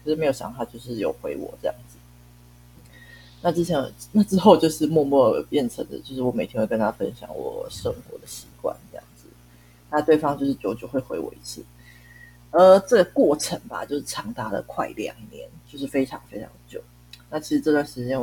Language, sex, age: Chinese, female, 30-49